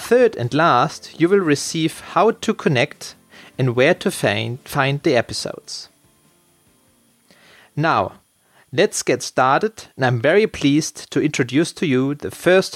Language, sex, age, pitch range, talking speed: English, male, 30-49, 130-170 Hz, 135 wpm